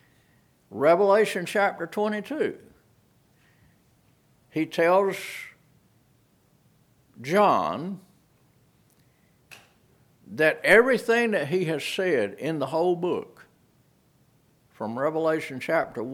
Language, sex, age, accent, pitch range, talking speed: English, male, 60-79, American, 115-165 Hz, 70 wpm